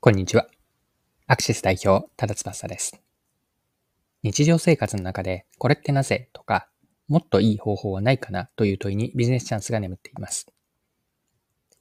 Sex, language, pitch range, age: male, Japanese, 100-145 Hz, 20-39